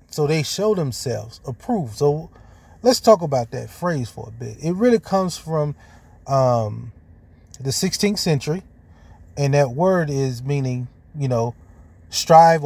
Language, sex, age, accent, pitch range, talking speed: English, male, 30-49, American, 115-170 Hz, 140 wpm